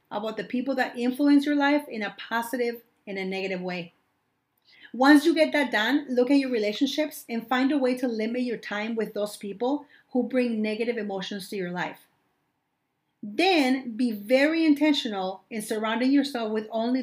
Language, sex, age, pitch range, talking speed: English, female, 40-59, 215-275 Hz, 175 wpm